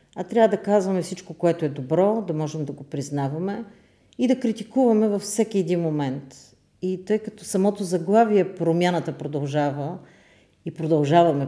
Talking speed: 150 wpm